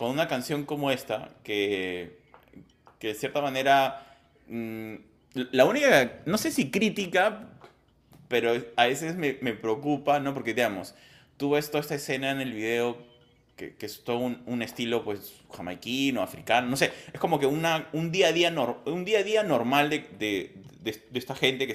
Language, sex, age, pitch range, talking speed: Spanish, male, 20-39, 105-140 Hz, 190 wpm